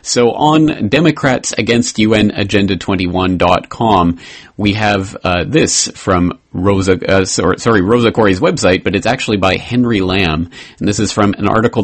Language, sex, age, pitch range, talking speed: English, male, 30-49, 95-120 Hz, 135 wpm